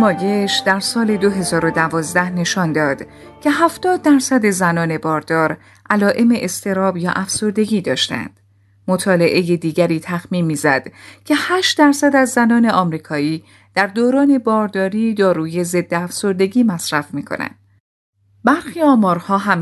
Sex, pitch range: female, 160-230 Hz